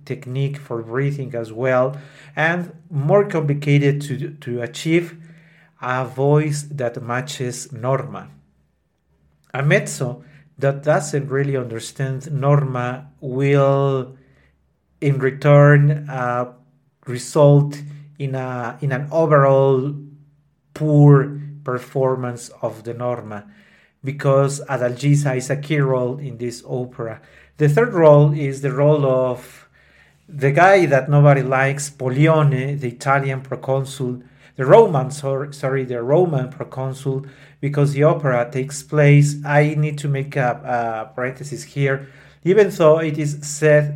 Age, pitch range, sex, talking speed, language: 40-59, 130-145 Hz, male, 115 wpm, English